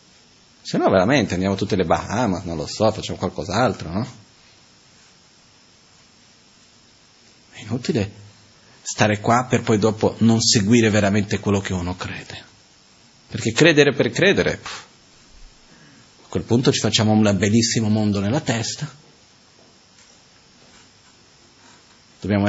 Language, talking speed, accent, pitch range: Italian, 110 wpm, native, 105-160 Hz